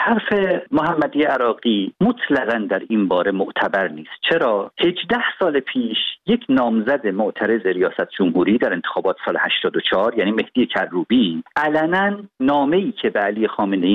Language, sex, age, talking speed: Persian, male, 50-69, 135 wpm